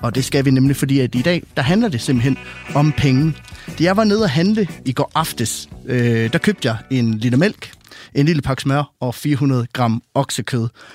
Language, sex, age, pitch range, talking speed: Danish, male, 30-49, 125-165 Hz, 215 wpm